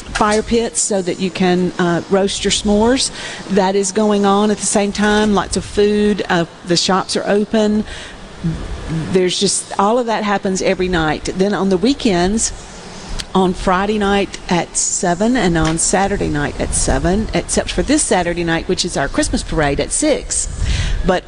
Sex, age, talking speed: female, 50-69, 175 wpm